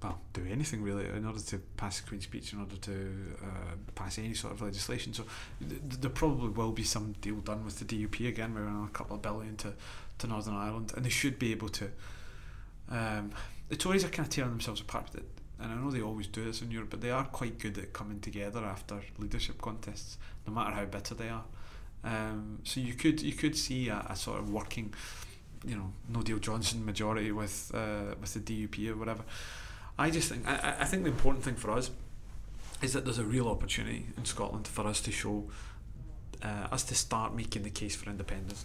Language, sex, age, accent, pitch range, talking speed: English, male, 30-49, British, 100-115 Hz, 220 wpm